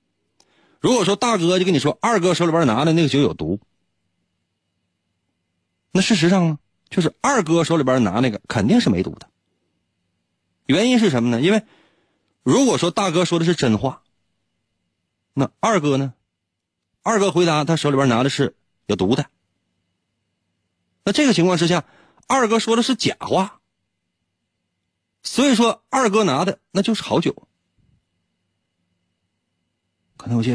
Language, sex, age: Chinese, male, 30-49